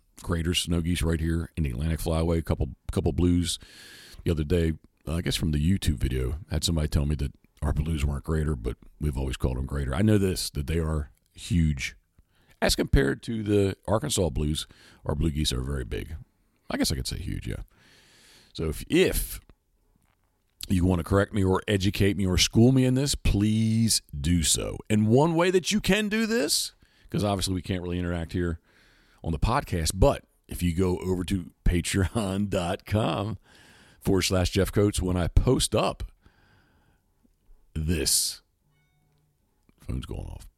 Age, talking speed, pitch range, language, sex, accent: 40-59, 180 wpm, 80-95 Hz, English, male, American